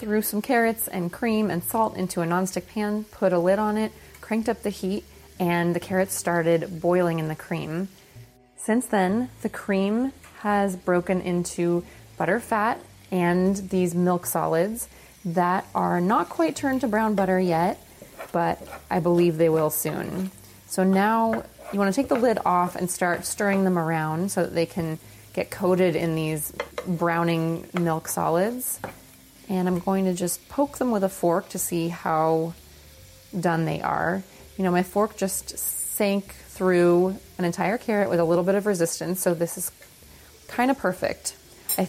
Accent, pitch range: American, 170-200 Hz